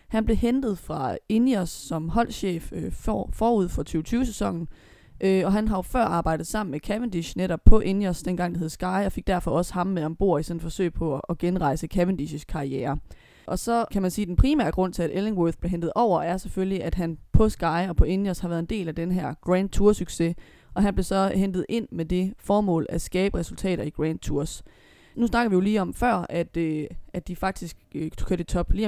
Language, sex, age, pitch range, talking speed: Danish, female, 20-39, 165-200 Hz, 230 wpm